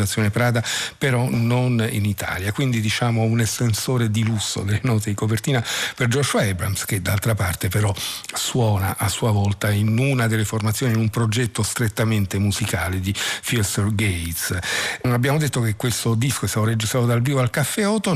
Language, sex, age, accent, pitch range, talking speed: Italian, male, 50-69, native, 105-125 Hz, 170 wpm